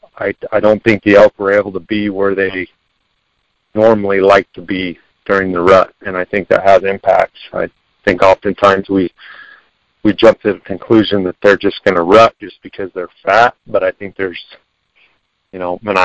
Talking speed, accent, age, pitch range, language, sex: 190 wpm, American, 50-69, 95-110 Hz, English, male